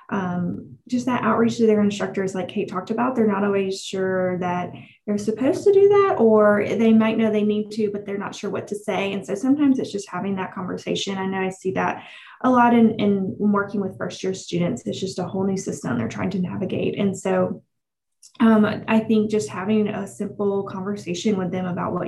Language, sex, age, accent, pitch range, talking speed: English, female, 20-39, American, 190-225 Hz, 215 wpm